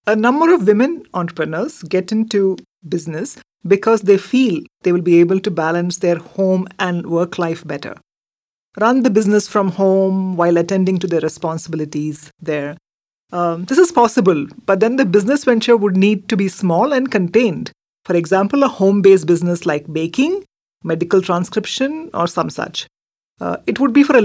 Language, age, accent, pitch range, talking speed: English, 40-59, Indian, 175-230 Hz, 170 wpm